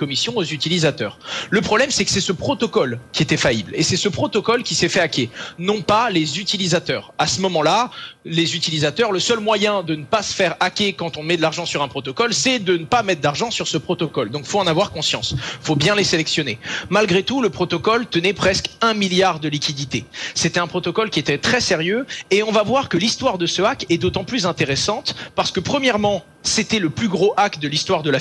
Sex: male